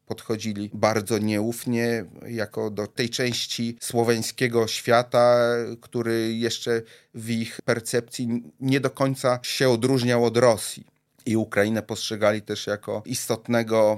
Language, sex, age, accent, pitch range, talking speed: Polish, male, 30-49, native, 105-125 Hz, 115 wpm